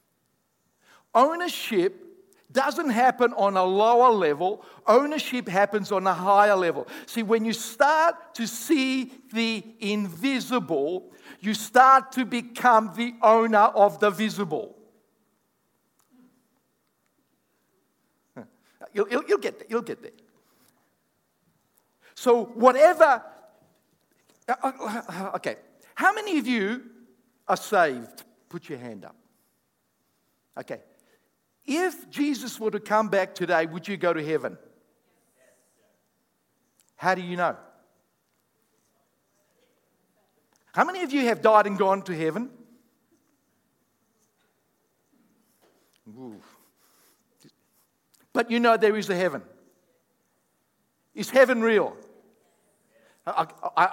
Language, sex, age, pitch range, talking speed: English, male, 50-69, 200-270 Hz, 100 wpm